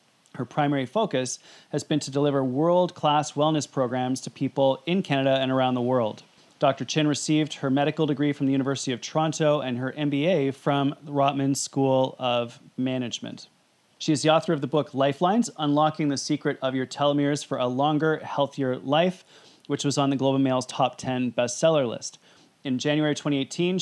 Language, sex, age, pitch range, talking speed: English, male, 30-49, 130-155 Hz, 175 wpm